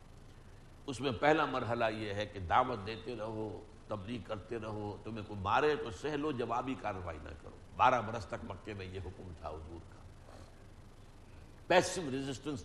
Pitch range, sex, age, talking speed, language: 100-140 Hz, male, 60-79, 160 wpm, Urdu